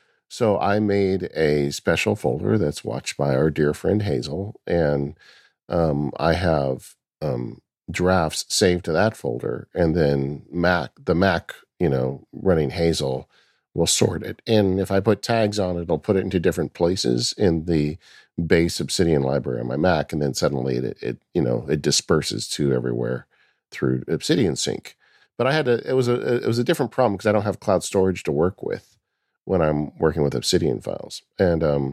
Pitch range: 75-105 Hz